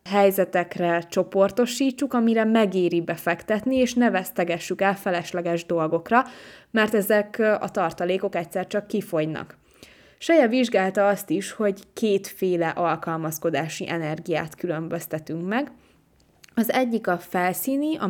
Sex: female